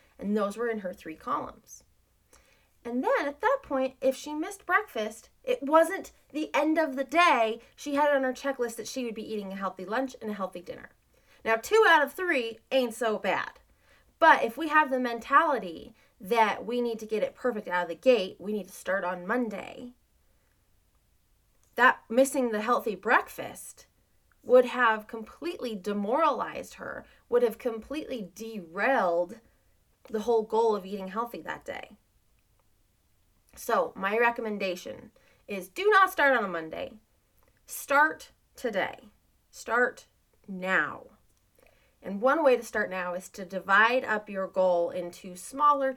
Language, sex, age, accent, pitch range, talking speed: English, female, 30-49, American, 190-260 Hz, 160 wpm